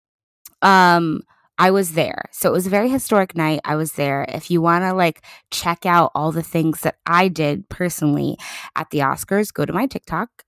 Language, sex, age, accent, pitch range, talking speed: English, female, 20-39, American, 155-220 Hz, 200 wpm